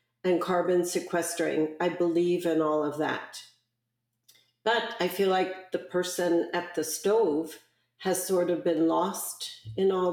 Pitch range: 165-190 Hz